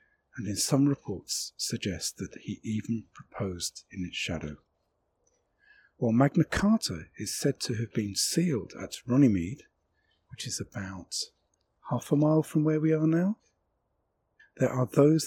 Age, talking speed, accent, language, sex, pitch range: 50-69, 145 wpm, British, English, male, 100-145 Hz